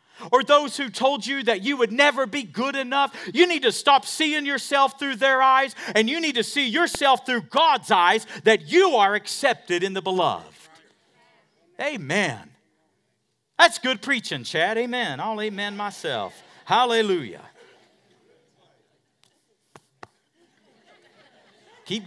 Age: 50-69